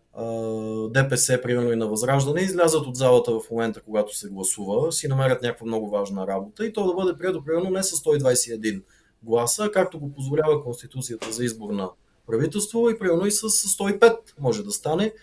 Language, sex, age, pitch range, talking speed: English, male, 30-49, 120-165 Hz, 175 wpm